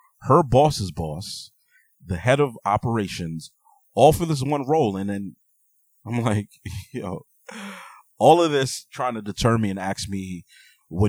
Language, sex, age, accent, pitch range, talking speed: English, male, 30-49, American, 90-115 Hz, 155 wpm